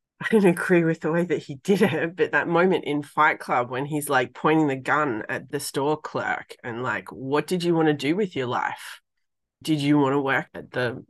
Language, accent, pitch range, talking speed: English, Australian, 135-170 Hz, 240 wpm